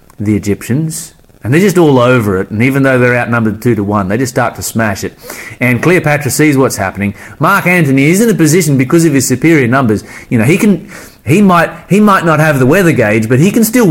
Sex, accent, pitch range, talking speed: male, Australian, 100-140 Hz, 235 wpm